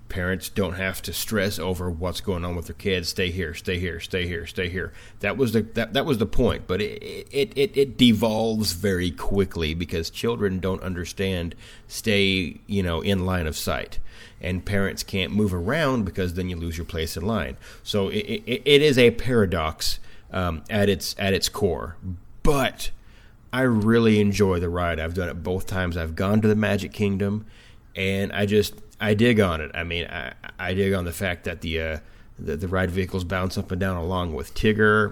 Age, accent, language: 30-49, American, English